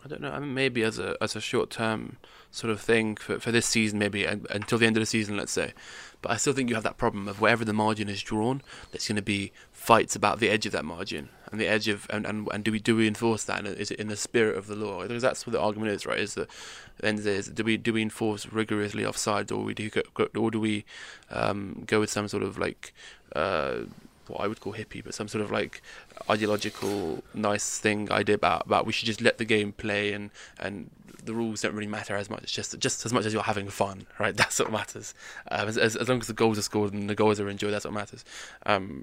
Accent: British